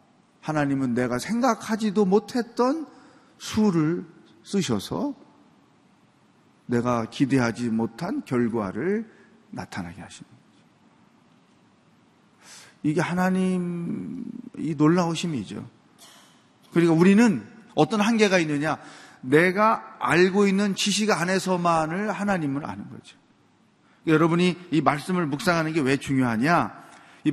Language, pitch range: Korean, 150-210 Hz